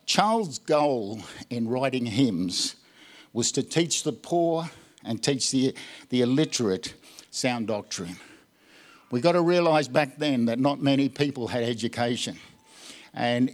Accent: Australian